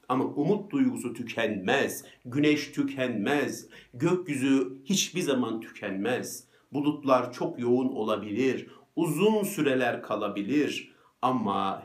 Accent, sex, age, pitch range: native, male, 50-69, 115-165 Hz